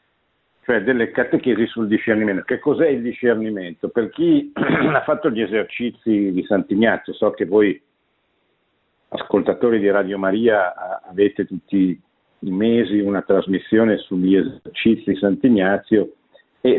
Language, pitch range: Italian, 95-115 Hz